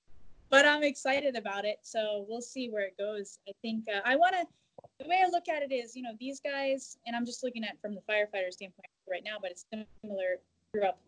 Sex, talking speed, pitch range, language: female, 235 wpm, 200-245 Hz, English